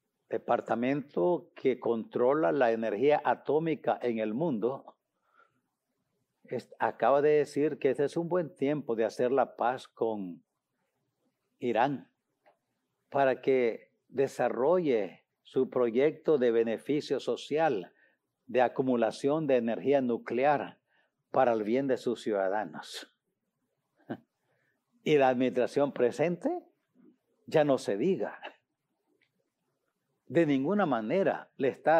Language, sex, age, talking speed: English, male, 50-69, 105 wpm